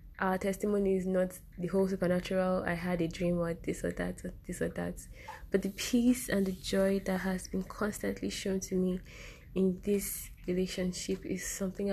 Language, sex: English, female